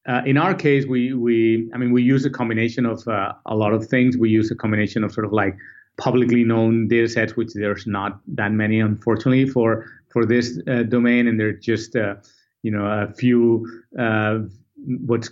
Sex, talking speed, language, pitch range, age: male, 205 wpm, English, 115-130 Hz, 30-49